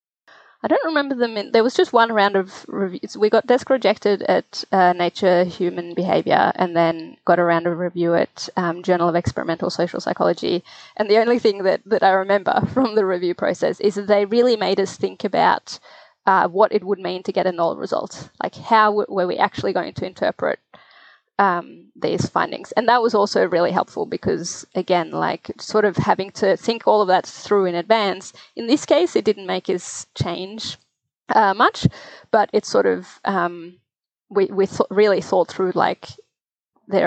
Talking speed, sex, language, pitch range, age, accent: 195 wpm, female, English, 180-215 Hz, 20-39, Australian